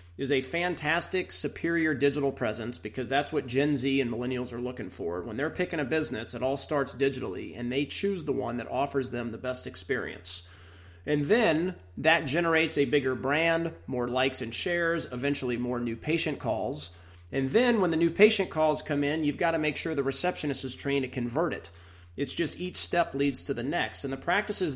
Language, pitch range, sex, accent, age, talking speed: English, 125-155 Hz, male, American, 30-49, 205 wpm